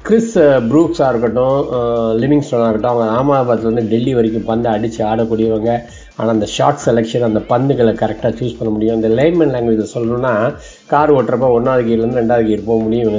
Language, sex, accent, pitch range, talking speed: Tamil, male, native, 110-125 Hz, 165 wpm